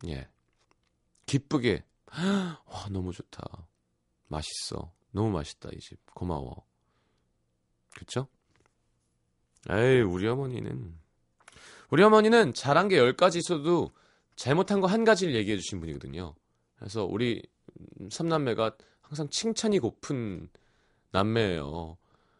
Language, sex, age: Korean, male, 30-49